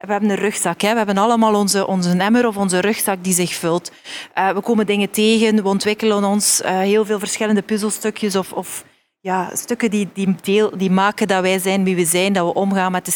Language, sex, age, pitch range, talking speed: Dutch, female, 30-49, 190-220 Hz, 230 wpm